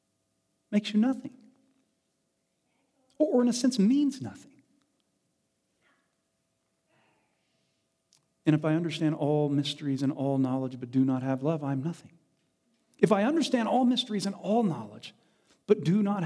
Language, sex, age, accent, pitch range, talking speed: English, male, 40-59, American, 200-290 Hz, 135 wpm